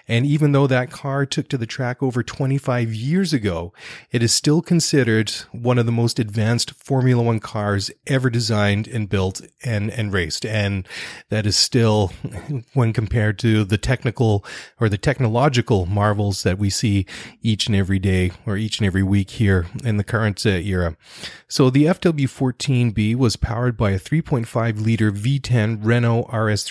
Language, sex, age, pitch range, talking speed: English, male, 30-49, 105-130 Hz, 165 wpm